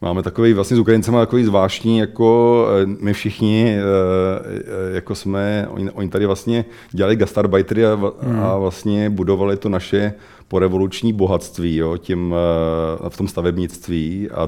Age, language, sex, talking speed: 40-59, Czech, male, 125 wpm